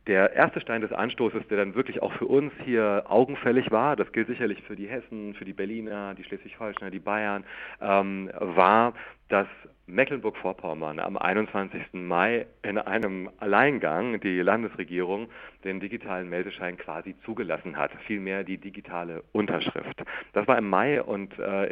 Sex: male